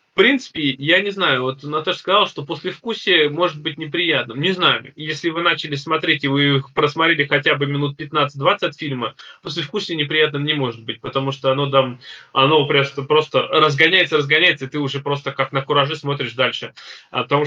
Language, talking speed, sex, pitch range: Russian, 180 wpm, male, 130-155 Hz